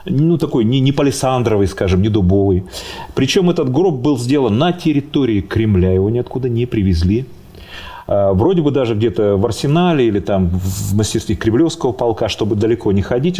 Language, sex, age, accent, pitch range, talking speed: Russian, male, 40-59, native, 95-140 Hz, 160 wpm